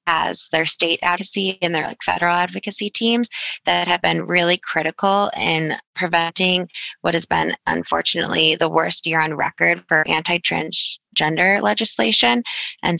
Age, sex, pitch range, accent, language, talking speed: 20-39, female, 155-175 Hz, American, English, 140 wpm